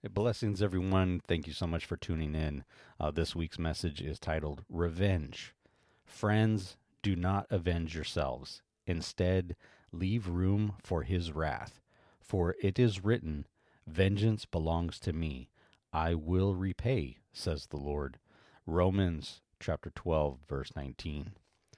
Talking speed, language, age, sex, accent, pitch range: 125 wpm, English, 40-59, male, American, 85-100 Hz